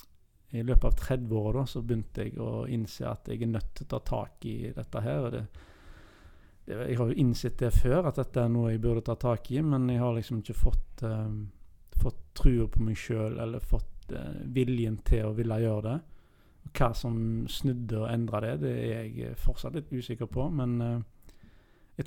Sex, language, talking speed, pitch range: male, English, 210 wpm, 110-125 Hz